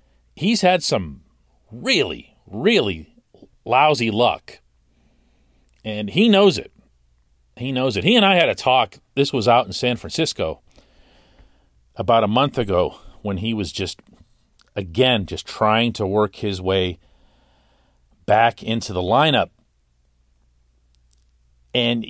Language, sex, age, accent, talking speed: English, male, 40-59, American, 125 wpm